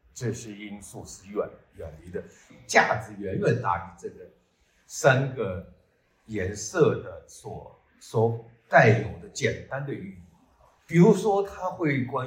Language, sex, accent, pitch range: Chinese, male, native, 110-175 Hz